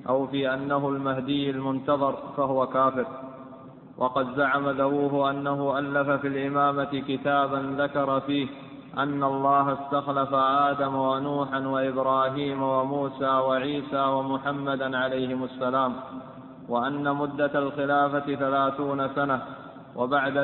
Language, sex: Arabic, male